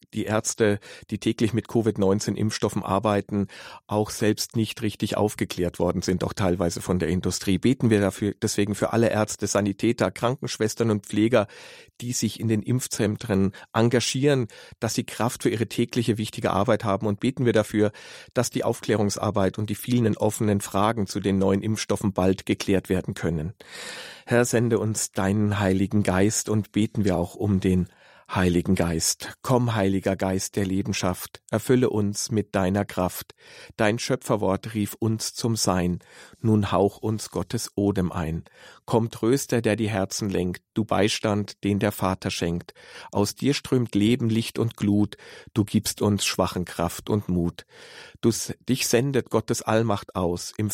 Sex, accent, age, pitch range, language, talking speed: male, German, 40-59, 95-110 Hz, German, 160 wpm